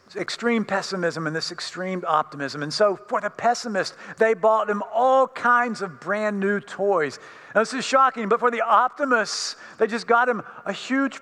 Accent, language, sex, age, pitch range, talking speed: American, English, male, 50-69, 170-235 Hz, 180 wpm